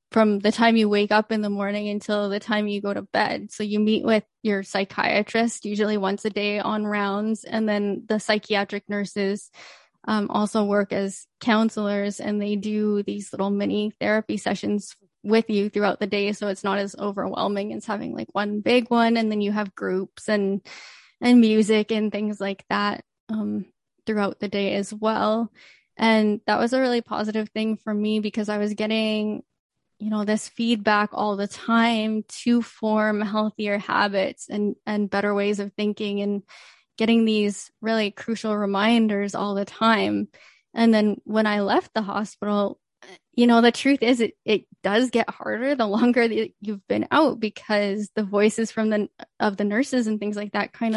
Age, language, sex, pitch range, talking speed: 10-29, English, female, 205-220 Hz, 180 wpm